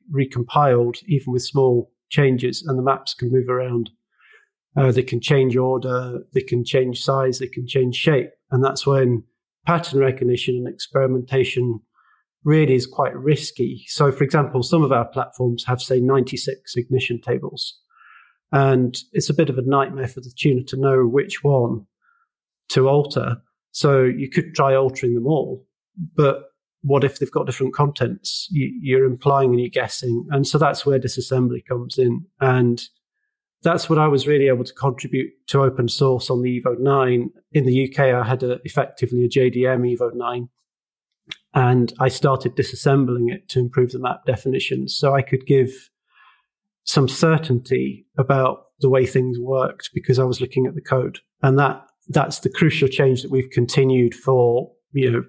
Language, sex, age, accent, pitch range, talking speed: English, male, 40-59, British, 125-140 Hz, 170 wpm